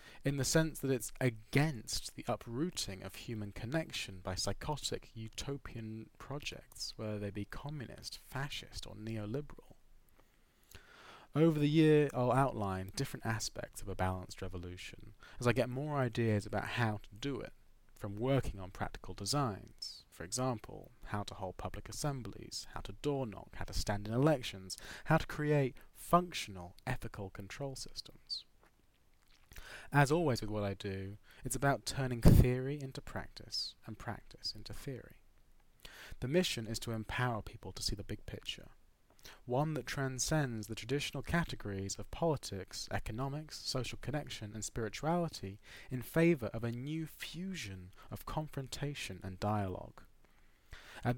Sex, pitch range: male, 100-140 Hz